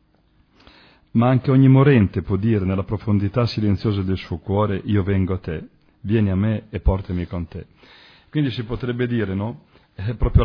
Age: 40-59